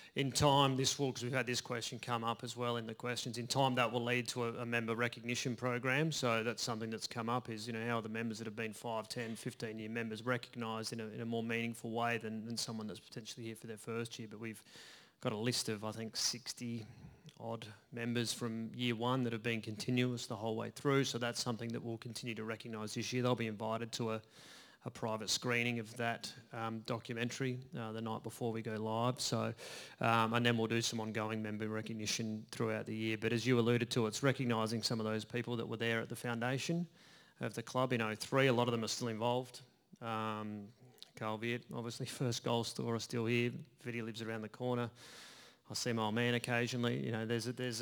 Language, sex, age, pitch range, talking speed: English, male, 30-49, 110-125 Hz, 230 wpm